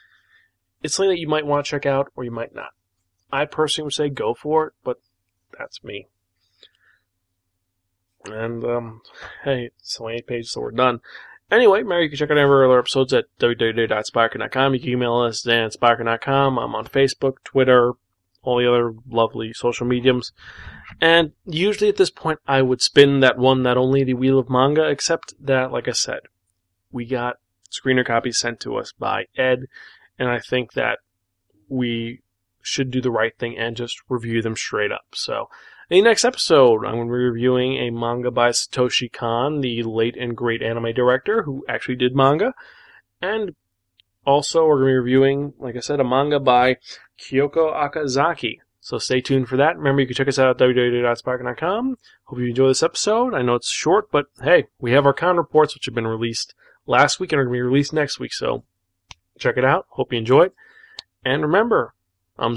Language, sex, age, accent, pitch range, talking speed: English, male, 20-39, American, 115-140 Hz, 190 wpm